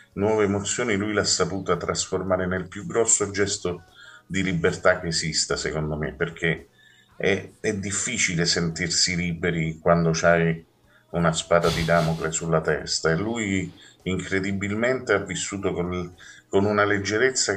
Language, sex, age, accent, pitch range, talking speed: Italian, male, 40-59, native, 85-100 Hz, 135 wpm